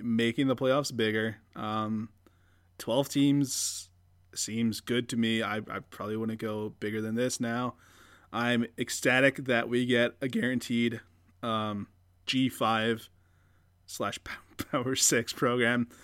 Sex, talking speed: male, 125 wpm